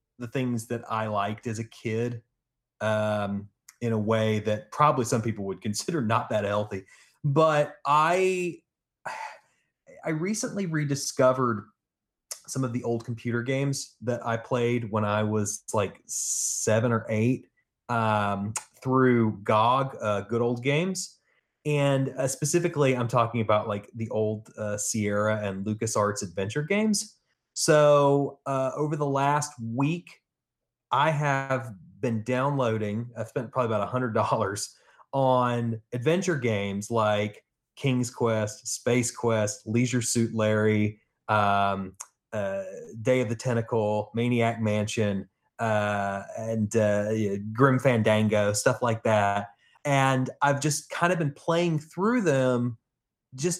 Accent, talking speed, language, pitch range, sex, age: American, 130 wpm, English, 110-140 Hz, male, 30-49